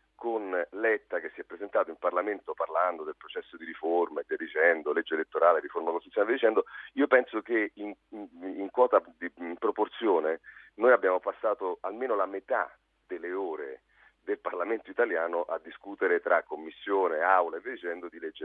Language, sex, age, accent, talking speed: Italian, male, 40-59, native, 165 wpm